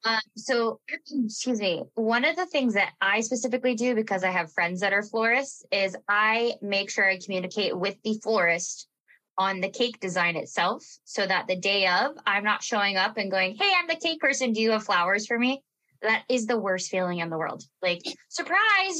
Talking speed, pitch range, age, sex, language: 205 wpm, 185-235 Hz, 20-39, female, English